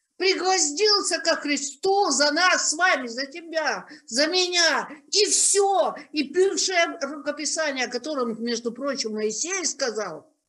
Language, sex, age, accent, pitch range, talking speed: Russian, female, 50-69, native, 220-310 Hz, 125 wpm